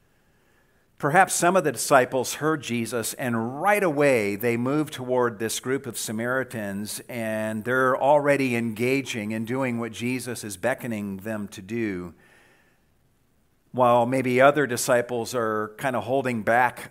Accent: American